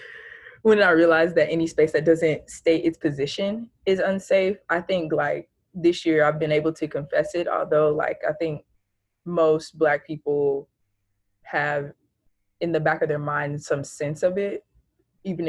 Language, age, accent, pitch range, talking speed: English, 20-39, American, 150-180 Hz, 165 wpm